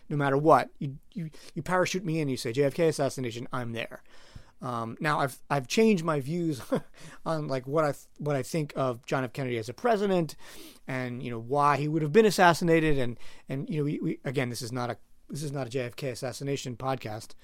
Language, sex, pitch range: English, male, 130-160 Hz